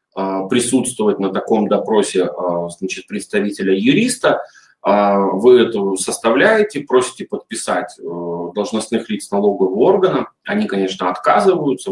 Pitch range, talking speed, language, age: 95-130 Hz, 95 wpm, Russian, 30-49